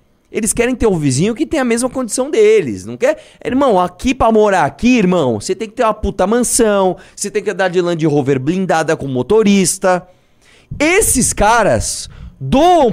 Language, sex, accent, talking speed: Portuguese, male, Brazilian, 180 wpm